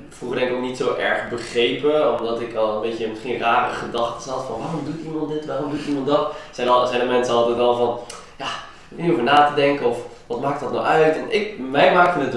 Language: Dutch